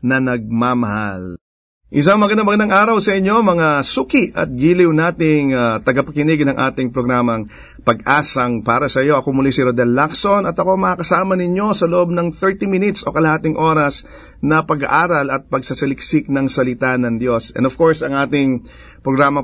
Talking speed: 160 wpm